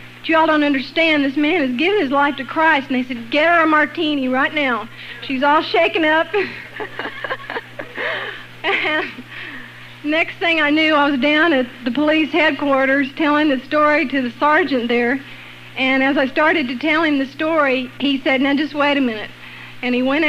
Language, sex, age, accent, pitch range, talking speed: English, female, 50-69, American, 255-310 Hz, 185 wpm